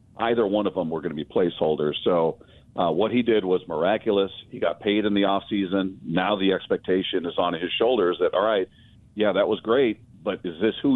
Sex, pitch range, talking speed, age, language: male, 90-110 Hz, 225 wpm, 50-69, English